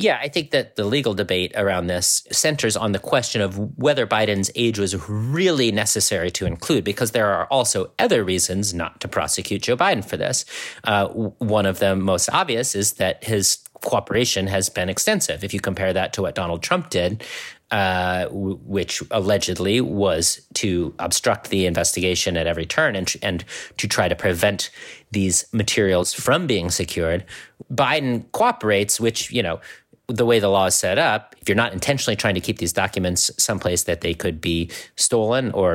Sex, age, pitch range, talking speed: male, 40-59, 90-110 Hz, 180 wpm